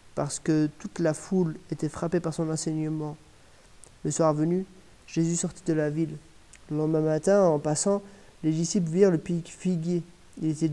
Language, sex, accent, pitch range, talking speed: French, male, French, 155-175 Hz, 170 wpm